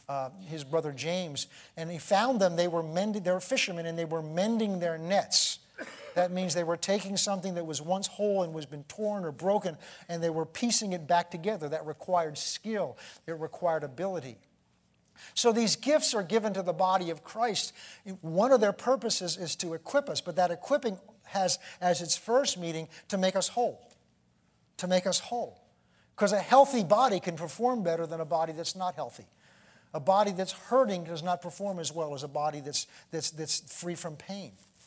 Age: 50-69